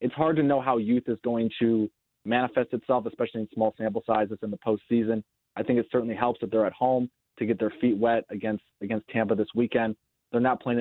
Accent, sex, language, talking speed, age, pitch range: American, male, English, 230 wpm, 30-49, 110-130 Hz